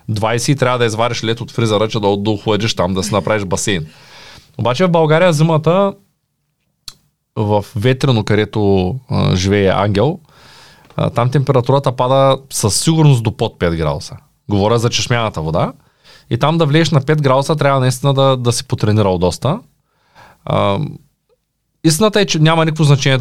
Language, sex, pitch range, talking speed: Bulgarian, male, 115-160 Hz, 150 wpm